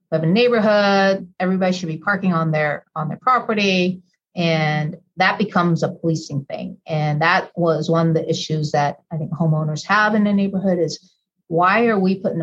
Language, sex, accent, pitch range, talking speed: English, female, American, 155-185 Hz, 195 wpm